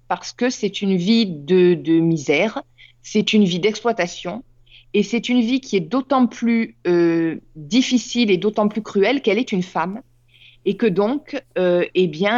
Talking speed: 175 wpm